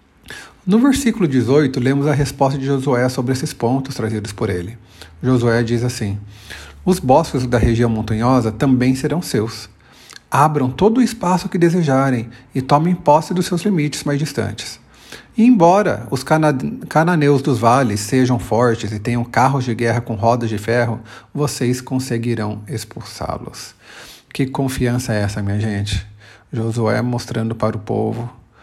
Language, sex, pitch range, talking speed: Portuguese, male, 115-145 Hz, 150 wpm